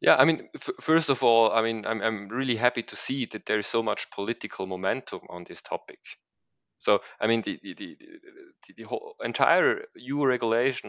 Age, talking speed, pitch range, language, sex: 30-49, 200 wpm, 110-165 Hz, English, male